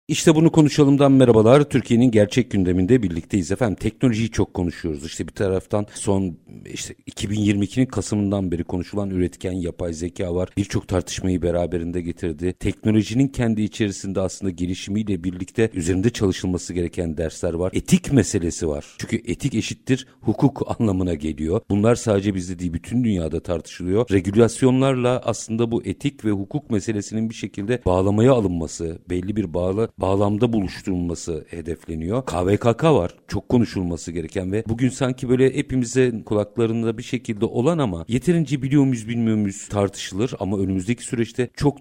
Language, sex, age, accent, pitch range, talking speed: Turkish, male, 50-69, native, 90-120 Hz, 140 wpm